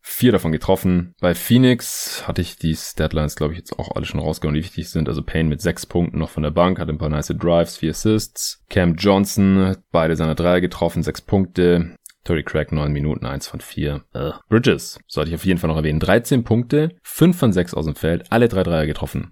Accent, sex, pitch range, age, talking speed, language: German, male, 80-105 Hz, 30-49, 225 wpm, German